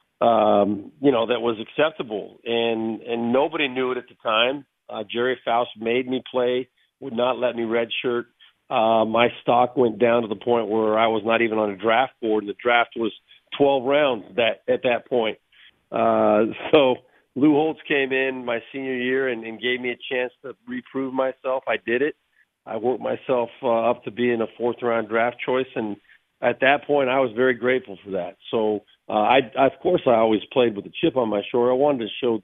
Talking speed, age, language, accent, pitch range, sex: 210 wpm, 40-59, English, American, 115-130 Hz, male